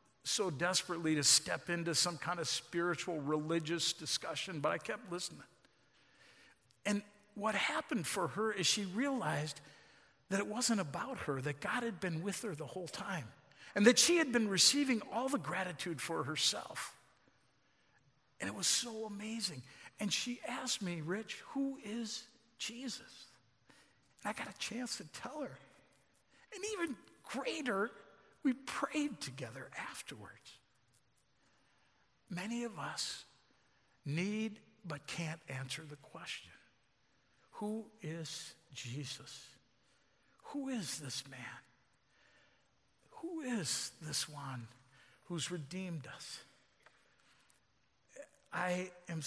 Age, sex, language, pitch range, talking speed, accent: 50-69, male, English, 150-220 Hz, 125 wpm, American